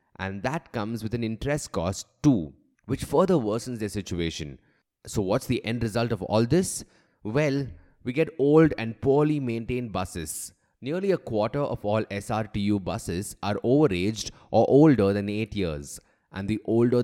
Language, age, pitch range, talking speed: English, 20-39, 95-130 Hz, 160 wpm